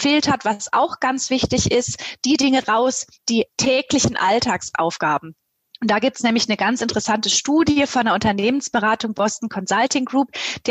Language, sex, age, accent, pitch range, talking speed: German, female, 20-39, German, 225-275 Hz, 155 wpm